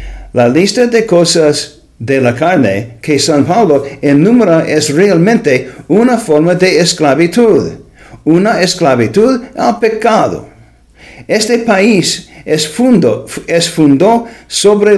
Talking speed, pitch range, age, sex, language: 110 wpm, 145-210 Hz, 50-69, male, English